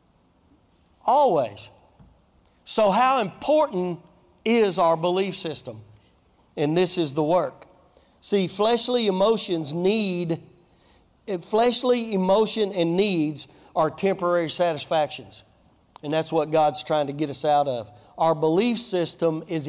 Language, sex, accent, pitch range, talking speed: English, male, American, 120-185 Hz, 115 wpm